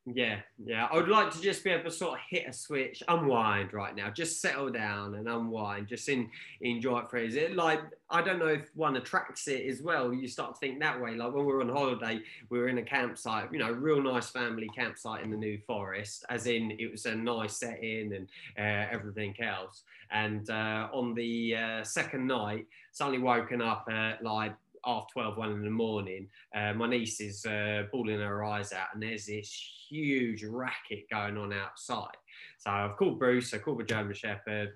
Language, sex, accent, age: English, male, British, 20-39